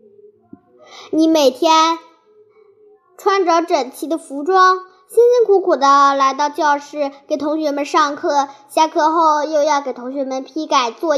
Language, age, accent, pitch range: Chinese, 10-29, native, 270-360 Hz